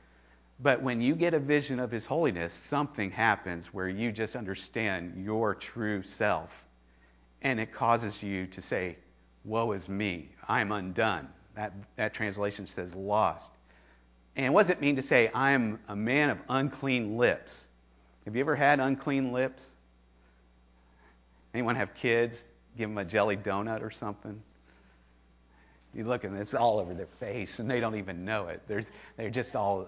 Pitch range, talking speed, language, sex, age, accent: 95-145 Hz, 165 wpm, English, male, 50-69, American